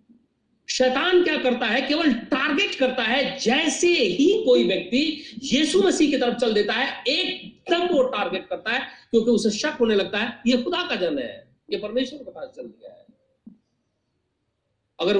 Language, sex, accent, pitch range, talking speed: Hindi, male, native, 200-290 Hz, 170 wpm